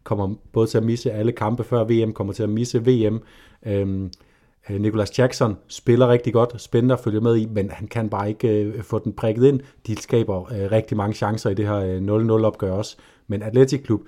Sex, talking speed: male, 210 wpm